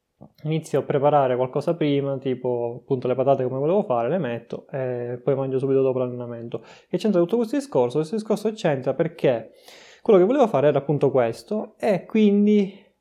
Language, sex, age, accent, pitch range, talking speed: Italian, male, 20-39, native, 130-170 Hz, 175 wpm